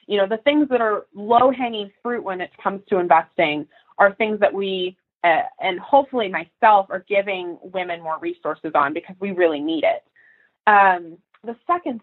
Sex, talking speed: female, 175 wpm